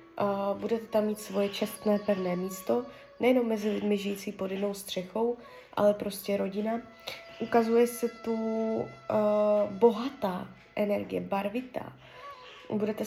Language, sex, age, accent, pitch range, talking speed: Czech, female, 20-39, native, 205-240 Hz, 120 wpm